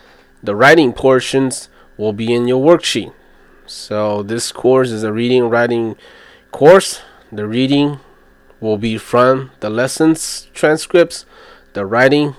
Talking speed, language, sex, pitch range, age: 125 wpm, English, male, 105-130 Hz, 20-39